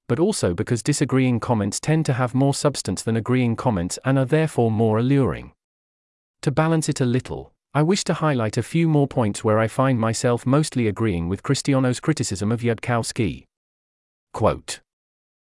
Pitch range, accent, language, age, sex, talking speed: 105-140 Hz, British, English, 40-59, male, 165 wpm